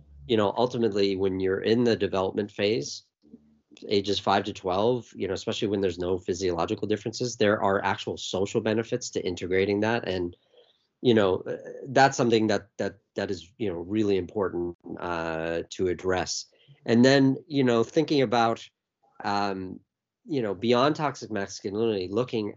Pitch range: 100-130 Hz